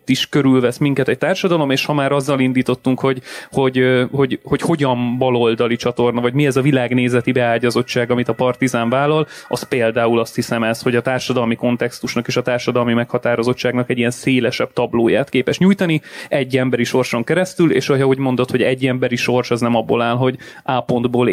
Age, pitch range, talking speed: 30-49, 120-140 Hz, 185 wpm